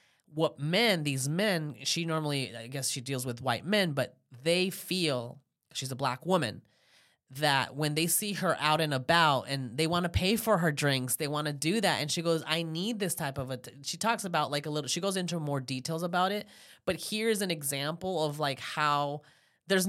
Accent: American